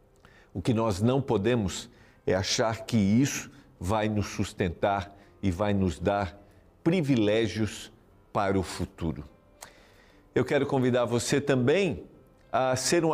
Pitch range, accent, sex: 110-150 Hz, Brazilian, male